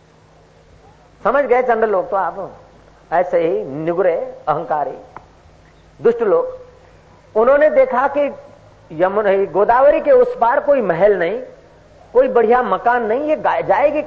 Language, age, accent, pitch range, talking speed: Hindi, 50-69, native, 170-245 Hz, 130 wpm